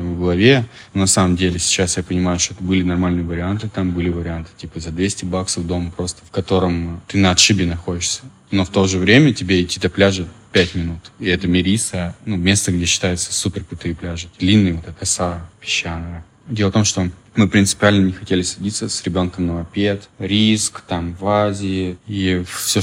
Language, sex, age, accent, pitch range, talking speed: Russian, male, 20-39, native, 90-100 Hz, 190 wpm